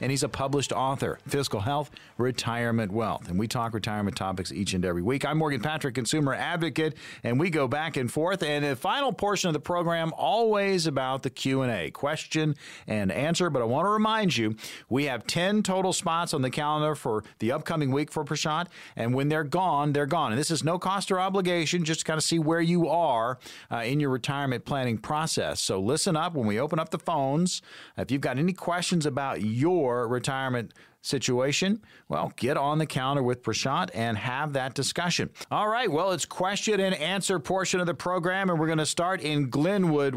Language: English